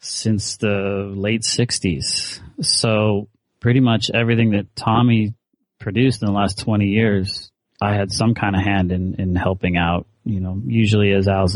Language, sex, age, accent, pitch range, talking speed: English, male, 30-49, American, 100-120 Hz, 160 wpm